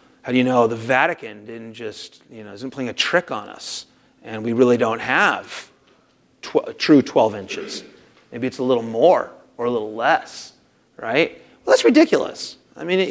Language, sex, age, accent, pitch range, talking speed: English, male, 30-49, American, 130-165 Hz, 180 wpm